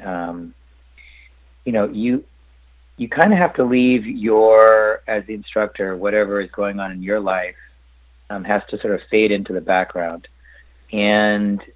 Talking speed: 160 wpm